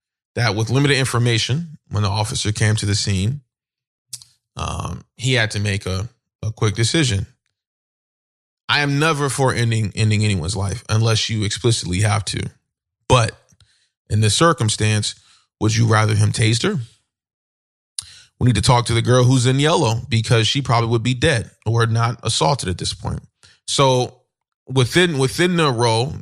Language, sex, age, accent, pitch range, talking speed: English, male, 20-39, American, 105-130 Hz, 160 wpm